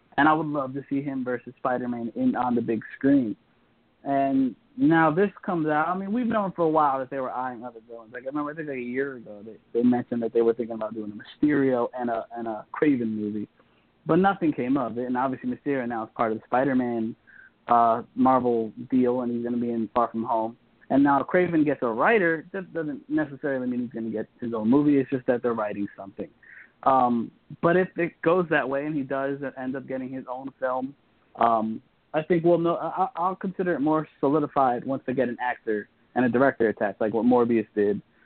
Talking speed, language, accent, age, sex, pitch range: 230 wpm, English, American, 20-39, male, 120-150 Hz